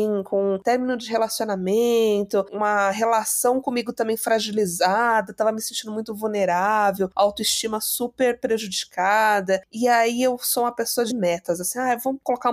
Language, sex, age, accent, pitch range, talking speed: Portuguese, female, 20-39, Brazilian, 195-245 Hz, 145 wpm